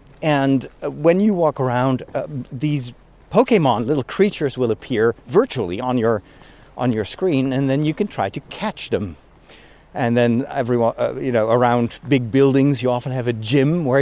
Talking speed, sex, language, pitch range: 175 wpm, male, English, 125-180 Hz